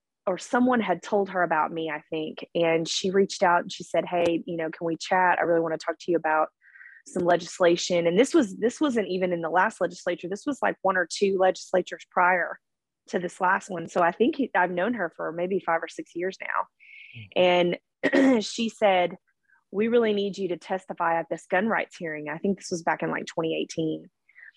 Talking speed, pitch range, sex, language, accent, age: 220 wpm, 175-210 Hz, female, English, American, 20-39